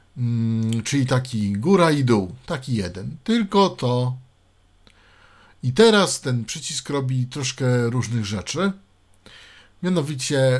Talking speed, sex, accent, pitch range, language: 100 wpm, male, native, 105-145 Hz, Polish